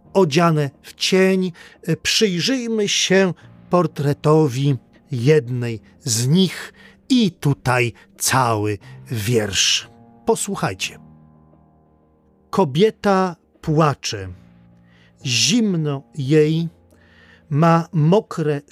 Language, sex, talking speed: Polish, male, 65 wpm